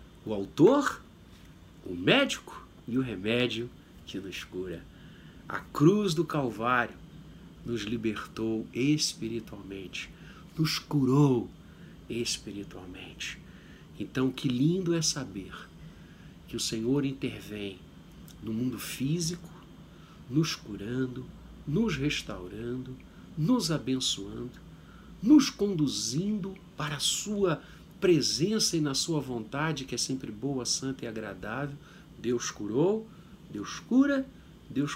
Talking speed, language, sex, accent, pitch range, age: 105 wpm, Portuguese, male, Brazilian, 110-160 Hz, 50-69